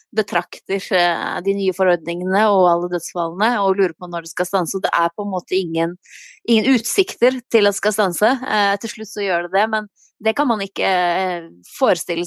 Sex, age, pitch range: female, 20-39, 180-215 Hz